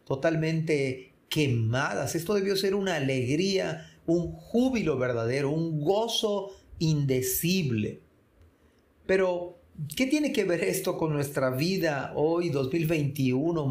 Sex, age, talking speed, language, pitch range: male, 40-59, 105 wpm, Spanish, 135-175 Hz